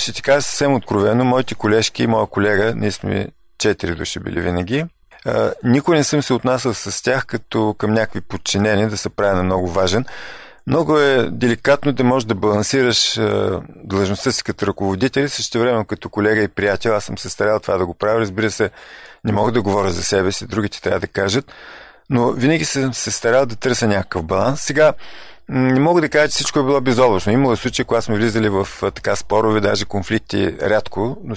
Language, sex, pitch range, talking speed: Bulgarian, male, 105-125 Hz, 195 wpm